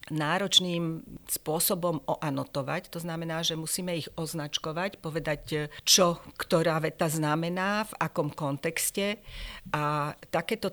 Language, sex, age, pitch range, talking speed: Slovak, female, 50-69, 140-170 Hz, 105 wpm